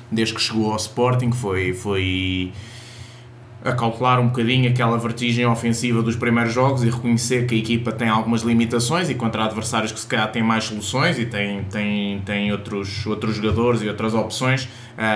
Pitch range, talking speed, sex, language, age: 105-120 Hz, 170 wpm, male, Portuguese, 20-39